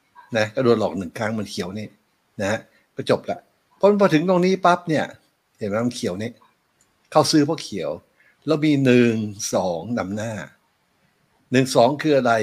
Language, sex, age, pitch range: Thai, male, 60-79, 110-140 Hz